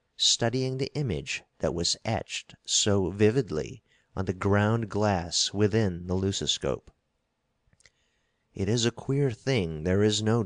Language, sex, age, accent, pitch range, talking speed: English, male, 50-69, American, 95-125 Hz, 130 wpm